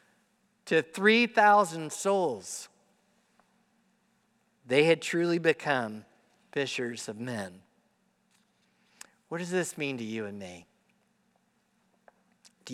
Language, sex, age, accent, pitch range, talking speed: English, male, 50-69, American, 130-205 Hz, 90 wpm